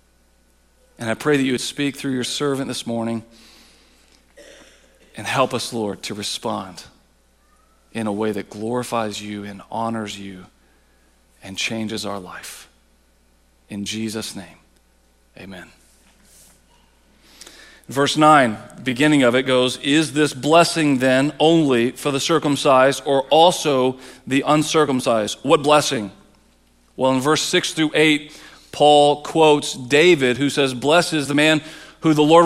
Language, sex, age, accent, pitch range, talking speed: English, male, 40-59, American, 115-185 Hz, 135 wpm